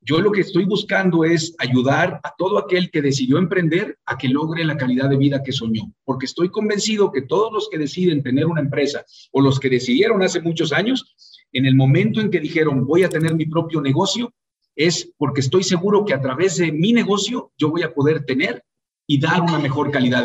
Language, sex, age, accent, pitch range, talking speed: Spanish, male, 50-69, Mexican, 150-205 Hz, 215 wpm